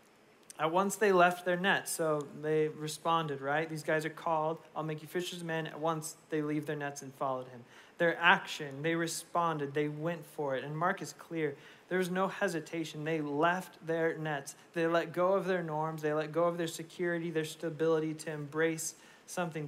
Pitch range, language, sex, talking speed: 155-185 Hz, English, male, 200 wpm